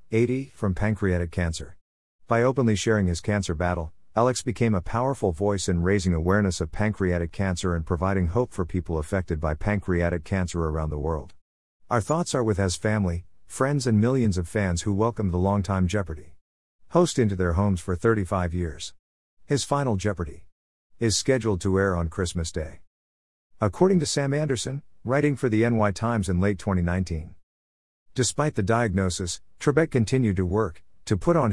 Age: 50-69